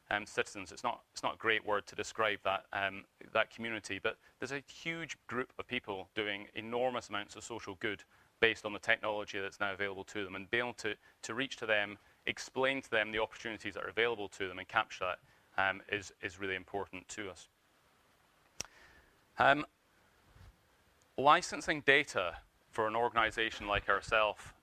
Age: 30-49